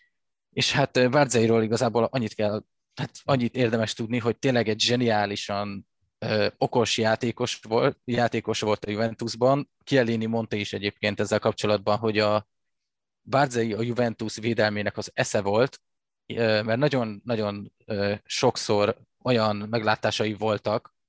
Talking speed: 120 wpm